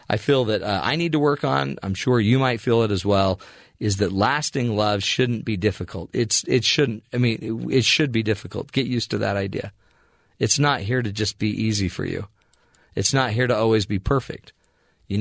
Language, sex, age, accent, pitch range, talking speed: English, male, 40-59, American, 95-120 Hz, 220 wpm